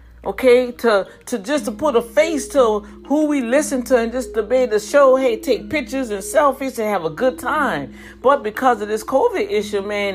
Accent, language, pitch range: American, English, 200-285 Hz